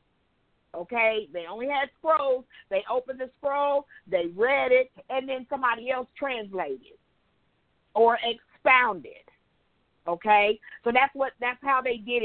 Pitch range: 215-300 Hz